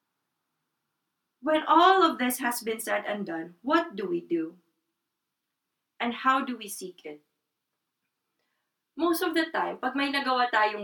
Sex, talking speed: female, 150 wpm